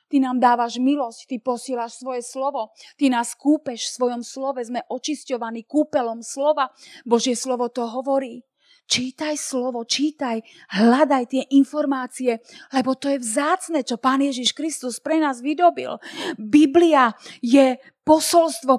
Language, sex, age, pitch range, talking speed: Slovak, female, 30-49, 255-300 Hz, 135 wpm